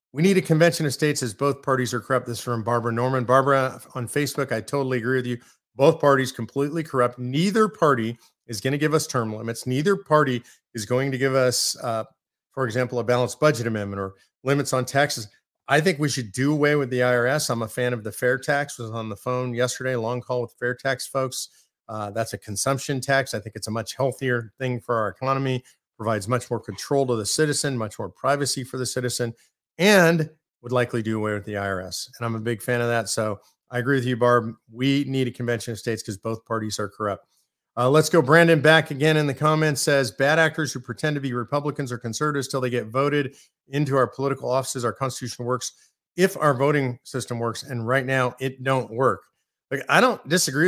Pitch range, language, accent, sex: 120-145 Hz, English, American, male